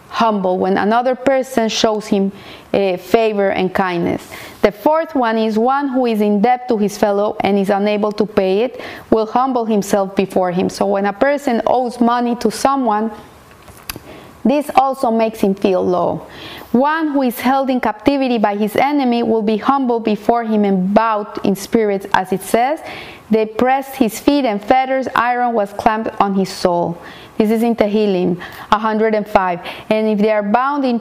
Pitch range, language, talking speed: 210-255 Hz, English, 175 wpm